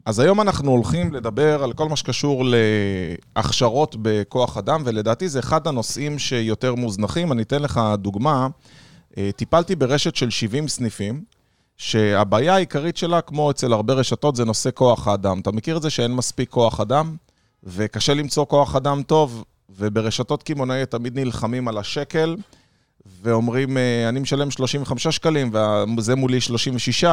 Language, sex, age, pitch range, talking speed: Hebrew, male, 20-39, 115-145 Hz, 145 wpm